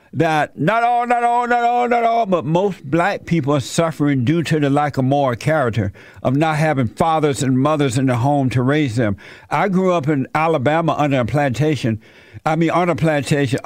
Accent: American